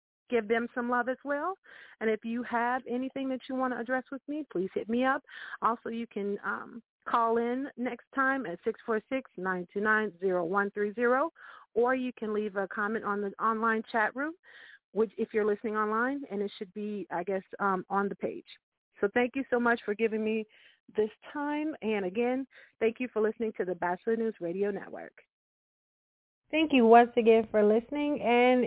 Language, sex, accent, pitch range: English, female, American, 215-250 Hz